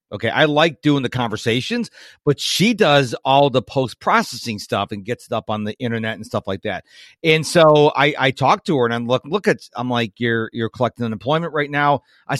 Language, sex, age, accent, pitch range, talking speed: English, male, 40-59, American, 120-155 Hz, 225 wpm